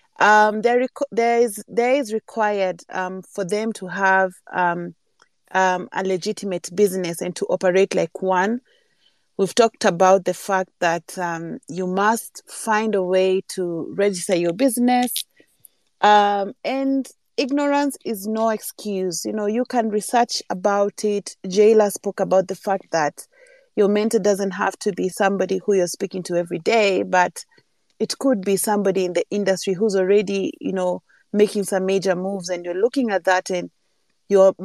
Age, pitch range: 30-49, 185-220 Hz